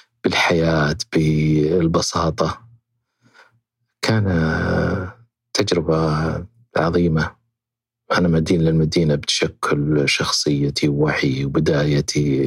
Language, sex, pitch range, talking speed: Arabic, male, 75-115 Hz, 60 wpm